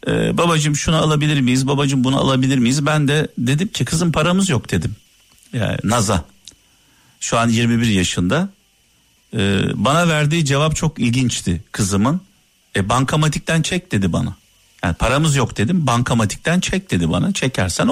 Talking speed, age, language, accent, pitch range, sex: 145 wpm, 50-69, Turkish, native, 115-155 Hz, male